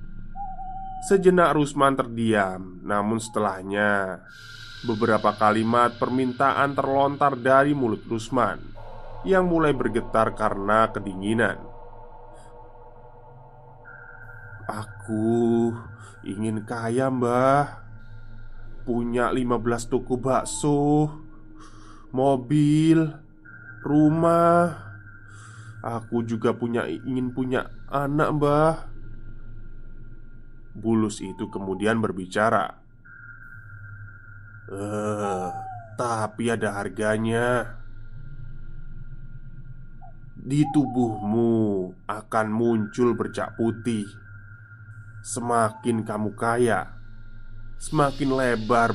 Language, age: Indonesian, 20-39